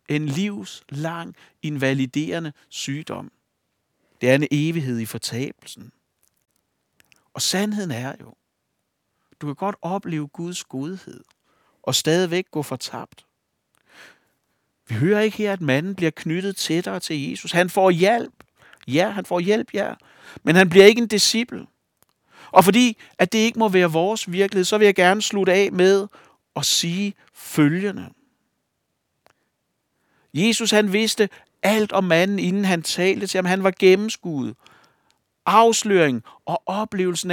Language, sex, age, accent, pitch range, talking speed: Danish, male, 60-79, native, 155-200 Hz, 135 wpm